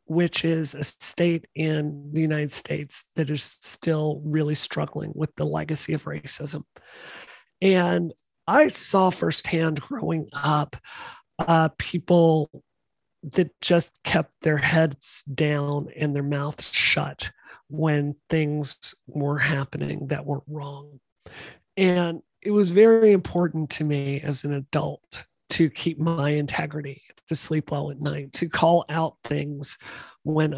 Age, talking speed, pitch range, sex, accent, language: 40-59, 130 wpm, 145-170 Hz, male, American, English